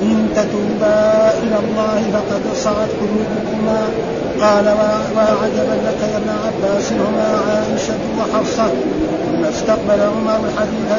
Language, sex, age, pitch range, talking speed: Arabic, male, 50-69, 210-220 Hz, 110 wpm